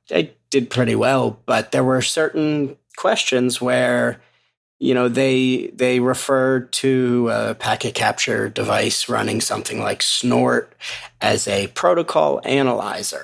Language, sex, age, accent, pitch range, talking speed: English, male, 30-49, American, 125-140 Hz, 125 wpm